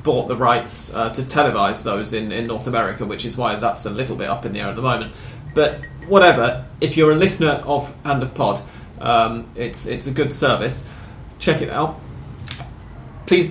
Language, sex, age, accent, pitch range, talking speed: English, male, 30-49, British, 125-150 Hz, 200 wpm